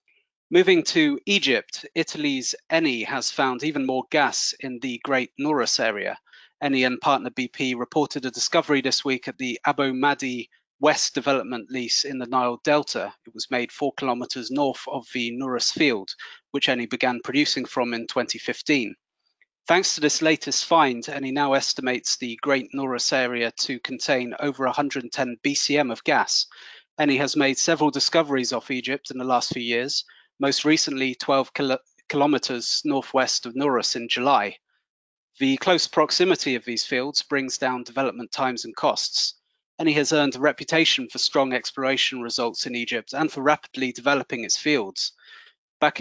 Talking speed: 160 wpm